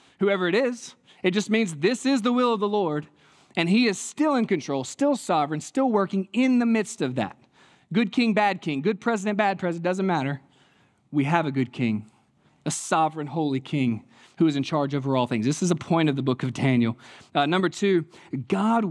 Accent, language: American, English